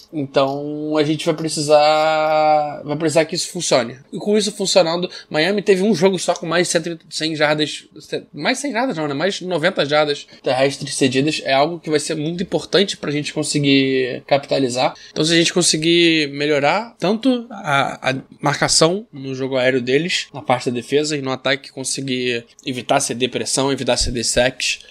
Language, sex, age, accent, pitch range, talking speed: Portuguese, male, 20-39, Brazilian, 135-160 Hz, 175 wpm